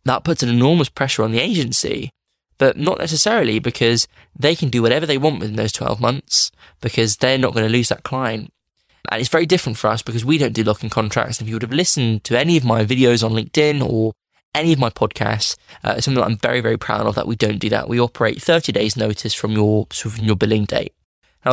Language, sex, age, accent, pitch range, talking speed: English, male, 20-39, British, 110-130 Hz, 235 wpm